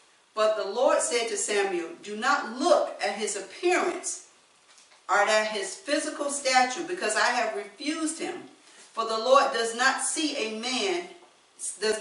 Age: 50-69